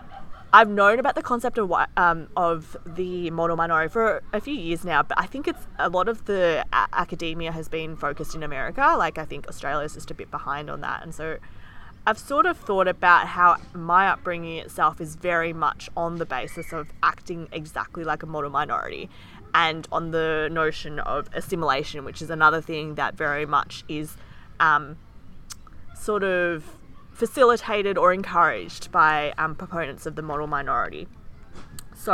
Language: English